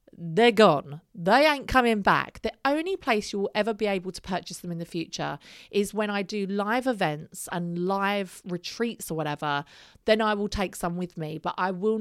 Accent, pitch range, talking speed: British, 170-220 Hz, 205 wpm